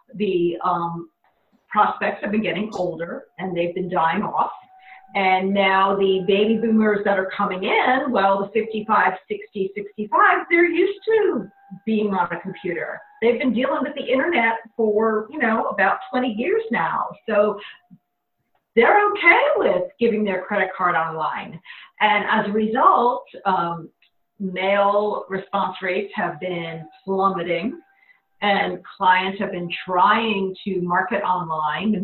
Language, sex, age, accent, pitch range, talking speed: English, female, 50-69, American, 180-230 Hz, 140 wpm